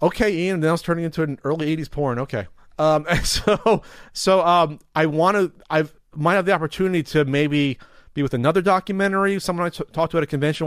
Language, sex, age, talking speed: English, male, 30-49, 195 wpm